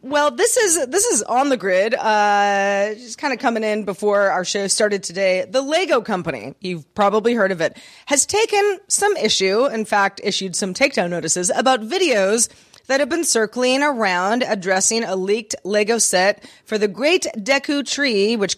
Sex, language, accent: female, English, American